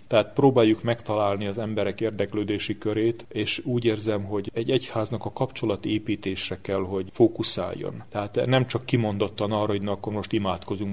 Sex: male